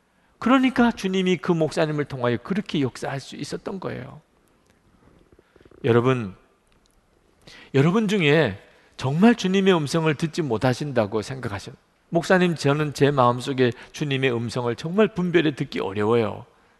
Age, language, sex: 40-59, Korean, male